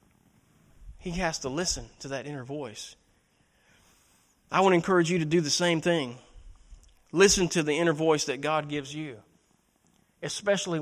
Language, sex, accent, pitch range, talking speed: English, male, American, 155-210 Hz, 155 wpm